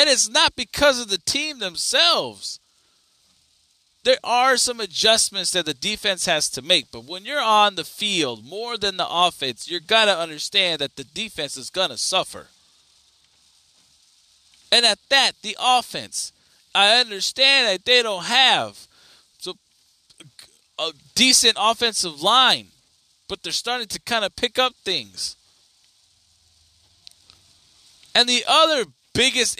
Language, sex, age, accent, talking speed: English, male, 20-39, American, 140 wpm